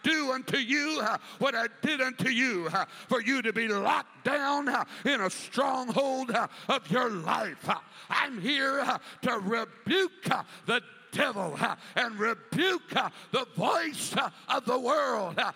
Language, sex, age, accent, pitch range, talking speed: English, male, 60-79, American, 230-285 Hz, 155 wpm